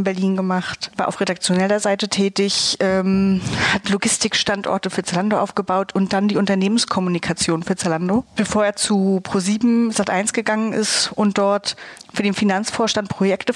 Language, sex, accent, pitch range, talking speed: German, female, German, 190-215 Hz, 145 wpm